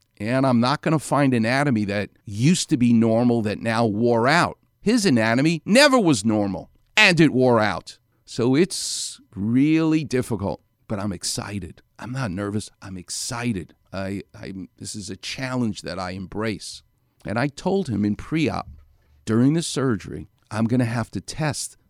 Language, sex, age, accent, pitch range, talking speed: English, male, 50-69, American, 100-150 Hz, 165 wpm